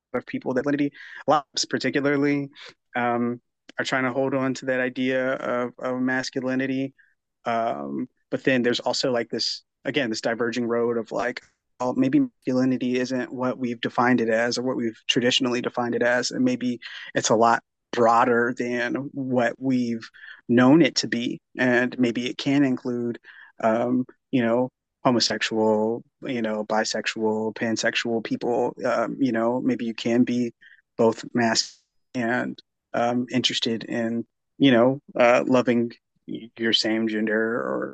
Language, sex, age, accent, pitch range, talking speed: English, male, 30-49, American, 115-130 Hz, 150 wpm